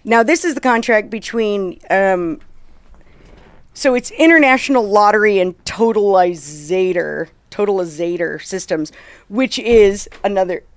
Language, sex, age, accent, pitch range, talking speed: English, female, 40-59, American, 175-215 Hz, 100 wpm